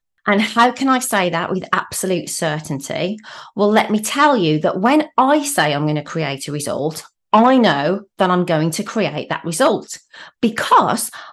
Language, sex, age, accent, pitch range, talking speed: English, female, 30-49, British, 175-260 Hz, 175 wpm